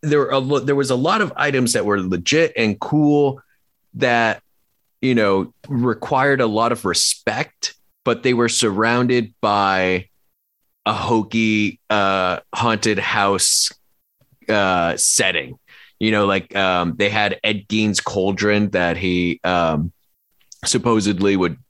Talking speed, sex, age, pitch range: 135 wpm, male, 30-49, 90-110 Hz